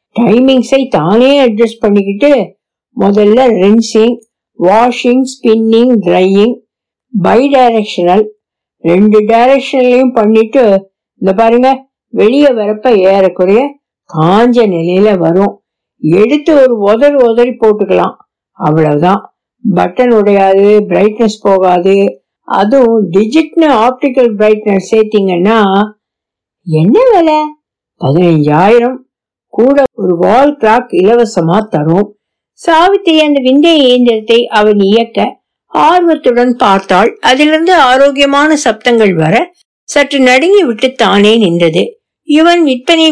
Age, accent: 60-79, native